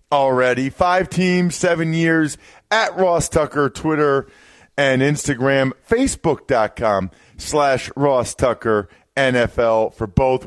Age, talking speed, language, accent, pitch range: 40-59, 105 wpm, English, American, 120-175 Hz